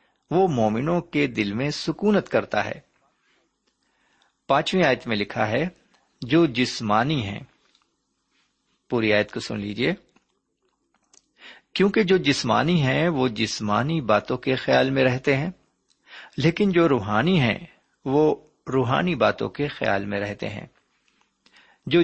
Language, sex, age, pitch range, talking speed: Urdu, male, 50-69, 115-155 Hz, 125 wpm